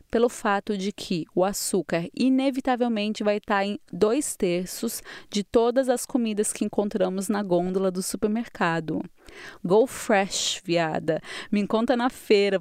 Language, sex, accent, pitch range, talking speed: Portuguese, female, Brazilian, 195-245 Hz, 140 wpm